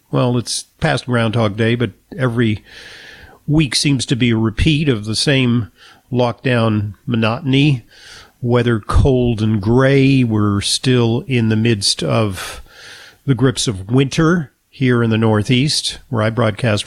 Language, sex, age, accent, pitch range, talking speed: English, male, 50-69, American, 110-135 Hz, 140 wpm